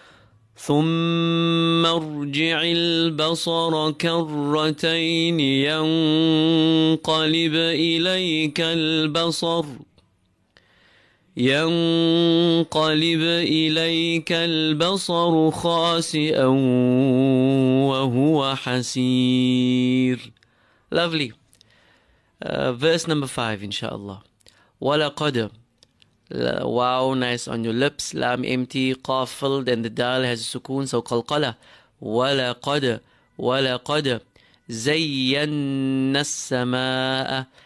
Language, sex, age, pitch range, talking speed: English, male, 30-49, 125-155 Hz, 70 wpm